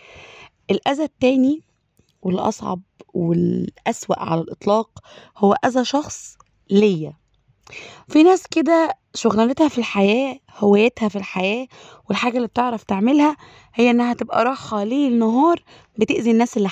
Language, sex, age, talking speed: Arabic, female, 20-39, 115 wpm